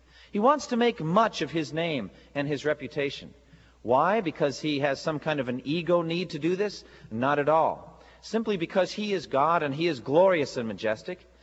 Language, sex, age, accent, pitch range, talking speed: English, male, 40-59, American, 130-180 Hz, 200 wpm